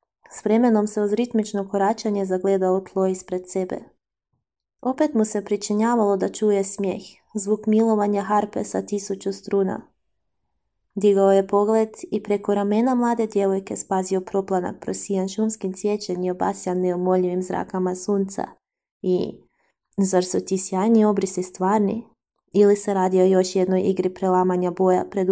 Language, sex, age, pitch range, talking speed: Croatian, female, 20-39, 190-220 Hz, 135 wpm